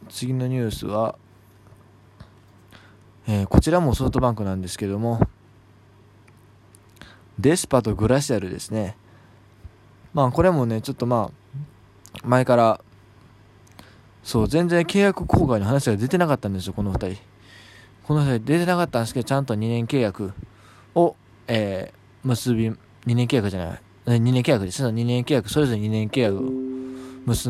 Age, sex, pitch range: 20-39, male, 100-125 Hz